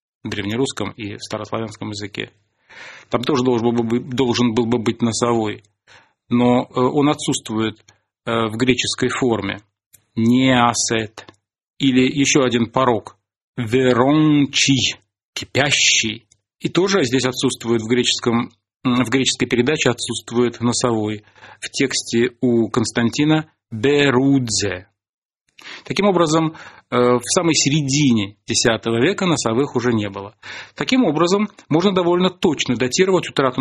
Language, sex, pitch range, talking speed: Russian, male, 115-140 Hz, 105 wpm